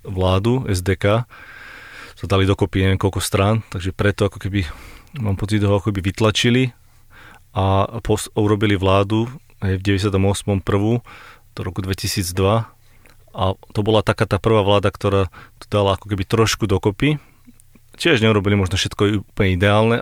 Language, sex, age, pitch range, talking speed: Slovak, male, 30-49, 100-115 Hz, 150 wpm